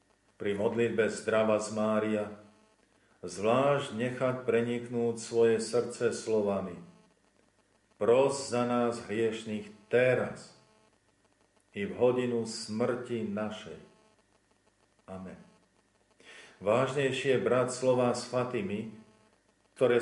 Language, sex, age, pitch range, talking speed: Slovak, male, 50-69, 105-120 Hz, 85 wpm